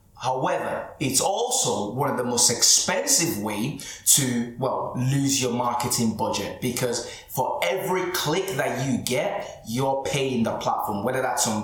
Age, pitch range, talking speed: 20-39, 115-150 Hz, 150 wpm